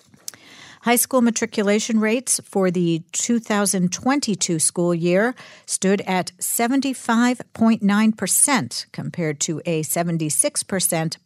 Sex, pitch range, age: female, 165-225 Hz, 50-69